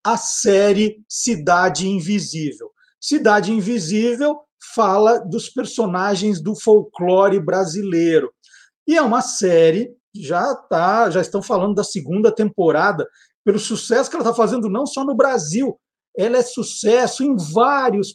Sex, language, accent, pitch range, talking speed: male, Portuguese, Brazilian, 195-255 Hz, 130 wpm